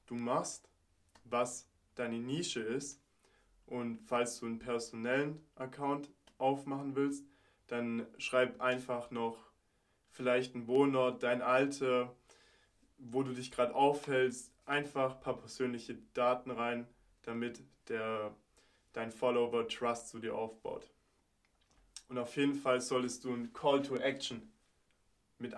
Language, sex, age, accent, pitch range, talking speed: German, male, 20-39, German, 115-135 Hz, 125 wpm